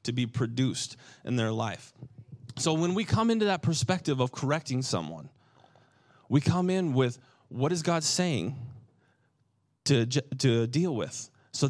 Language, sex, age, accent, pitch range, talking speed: English, male, 30-49, American, 120-155 Hz, 150 wpm